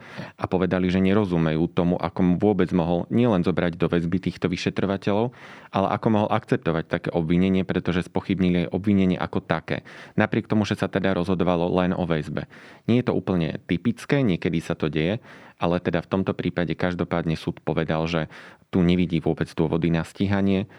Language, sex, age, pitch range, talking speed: Slovak, male, 30-49, 85-95 Hz, 170 wpm